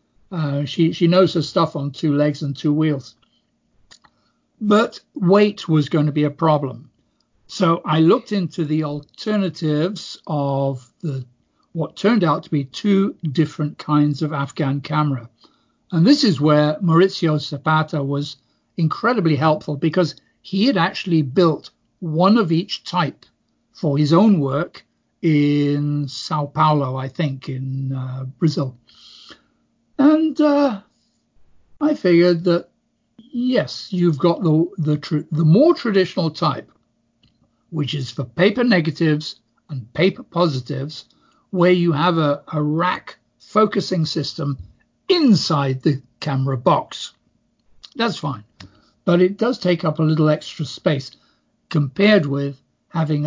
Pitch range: 145-180 Hz